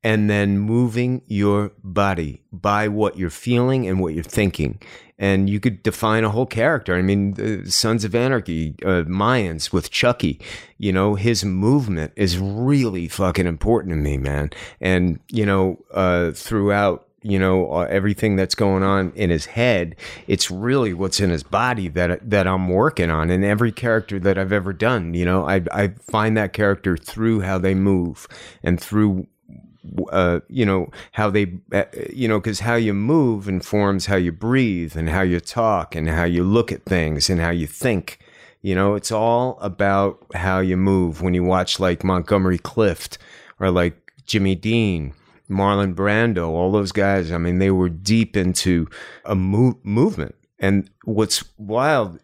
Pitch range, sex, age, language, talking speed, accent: 90-110 Hz, male, 30-49, English, 170 wpm, American